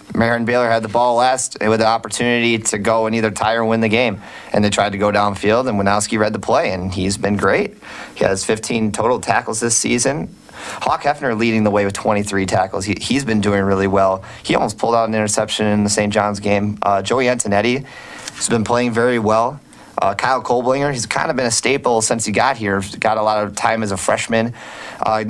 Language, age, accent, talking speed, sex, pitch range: English, 30-49, American, 225 wpm, male, 100-120 Hz